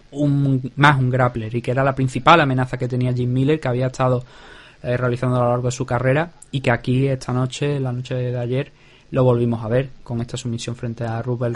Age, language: 20-39, Spanish